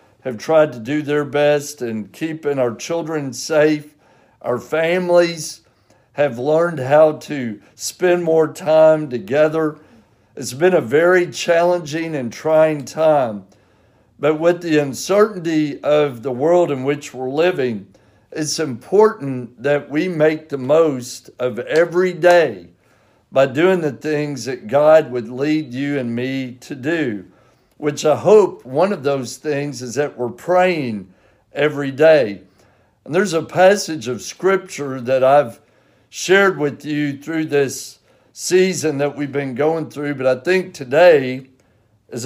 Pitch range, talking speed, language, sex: 125-160 Hz, 140 wpm, English, male